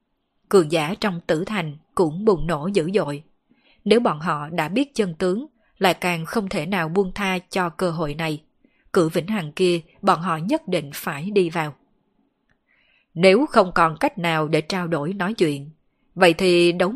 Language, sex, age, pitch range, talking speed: Vietnamese, female, 20-39, 165-210 Hz, 185 wpm